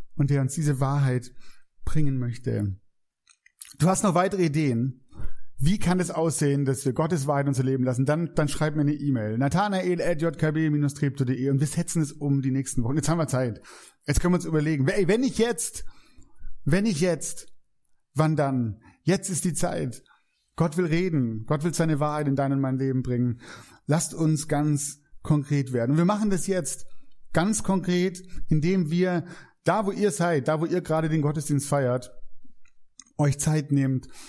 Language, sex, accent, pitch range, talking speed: German, male, German, 135-165 Hz, 180 wpm